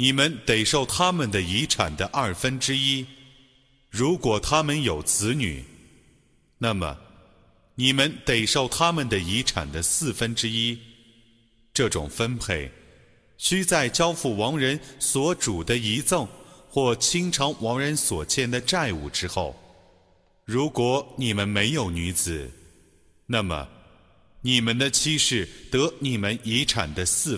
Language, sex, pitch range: Arabic, male, 95-130 Hz